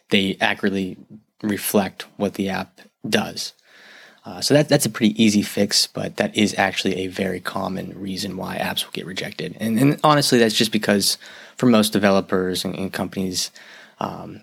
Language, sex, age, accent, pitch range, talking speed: English, male, 20-39, American, 95-110 Hz, 170 wpm